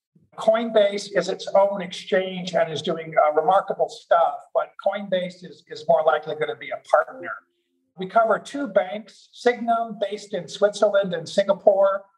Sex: male